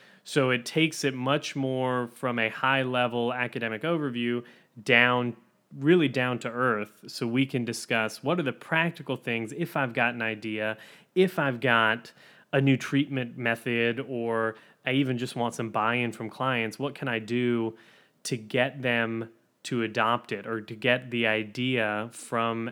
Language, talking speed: English, 165 wpm